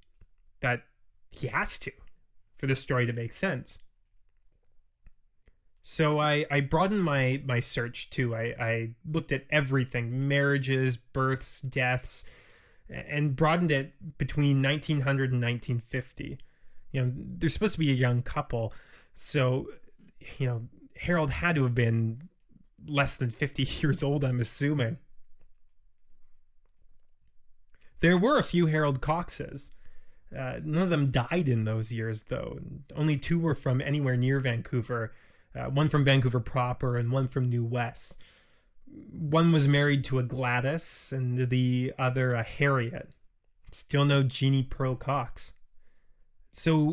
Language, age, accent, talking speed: English, 20-39, American, 135 wpm